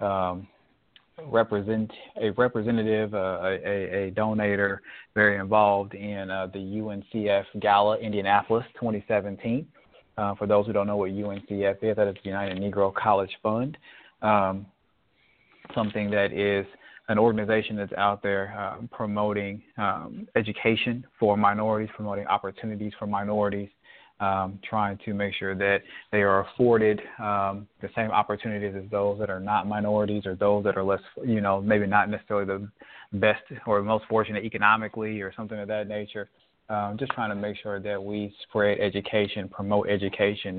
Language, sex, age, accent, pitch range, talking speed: English, male, 30-49, American, 100-110 Hz, 155 wpm